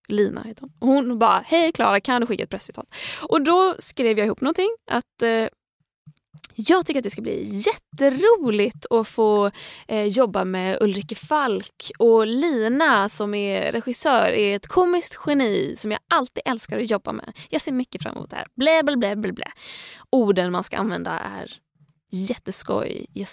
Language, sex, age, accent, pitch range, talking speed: Swedish, female, 20-39, native, 205-305 Hz, 175 wpm